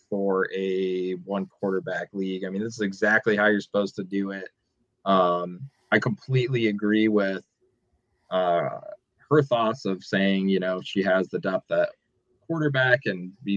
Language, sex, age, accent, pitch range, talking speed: English, male, 20-39, American, 95-120 Hz, 160 wpm